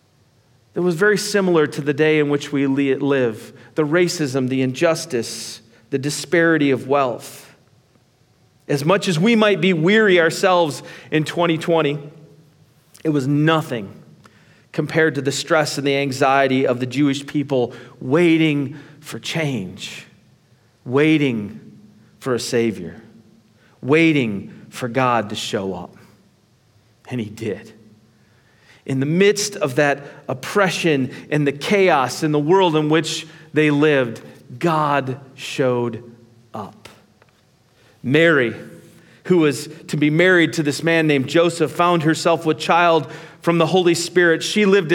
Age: 40-59